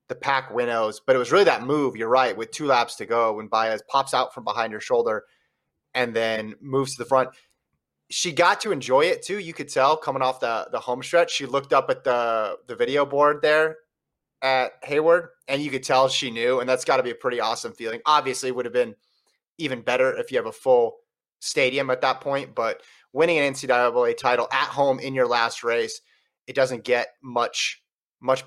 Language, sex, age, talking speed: English, male, 30-49, 215 wpm